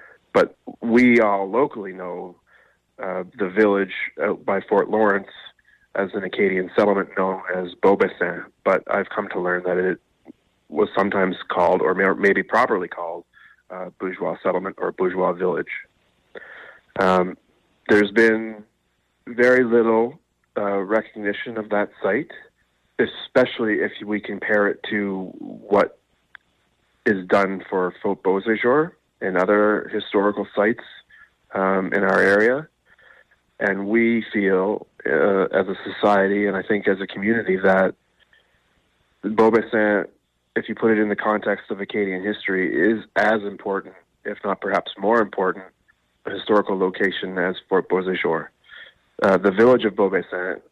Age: 30-49